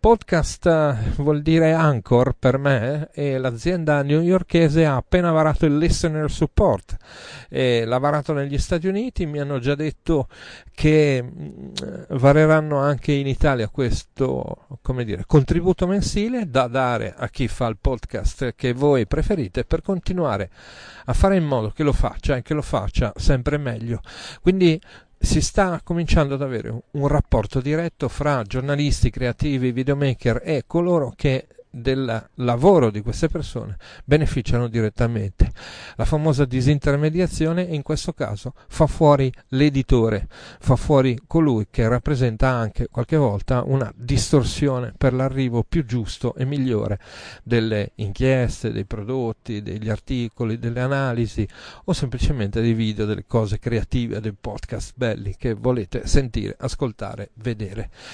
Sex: male